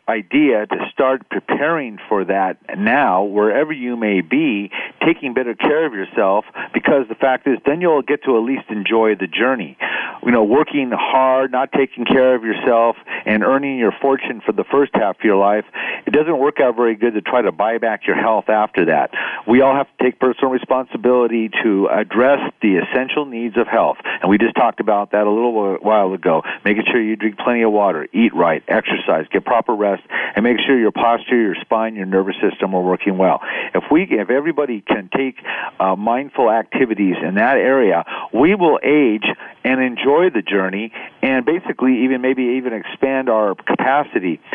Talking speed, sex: 190 wpm, male